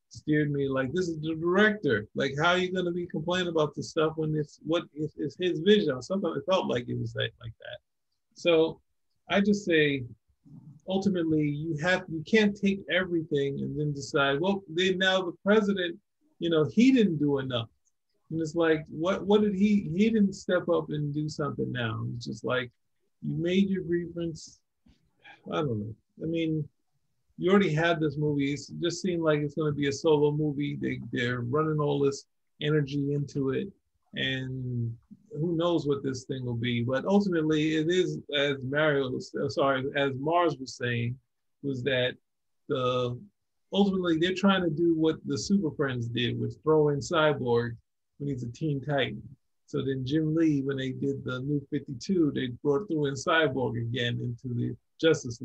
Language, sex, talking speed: English, male, 180 wpm